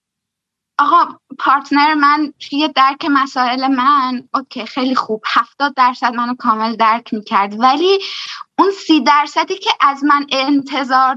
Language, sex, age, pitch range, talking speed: Persian, female, 10-29, 245-300 Hz, 130 wpm